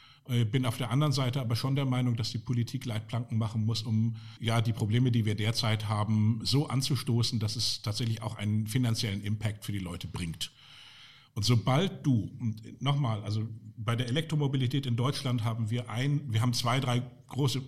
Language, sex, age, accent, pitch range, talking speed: German, male, 50-69, German, 110-135 Hz, 185 wpm